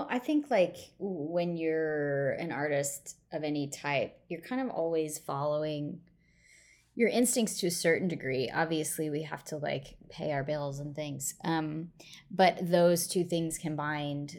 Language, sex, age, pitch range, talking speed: English, female, 20-39, 145-170 Hz, 155 wpm